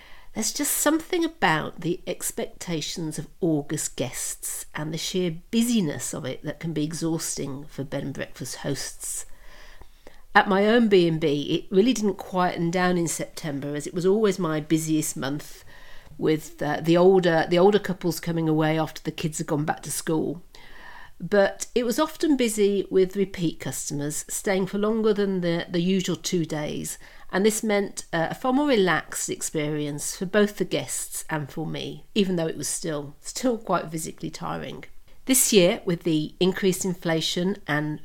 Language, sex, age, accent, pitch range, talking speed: English, female, 50-69, British, 155-200 Hz, 170 wpm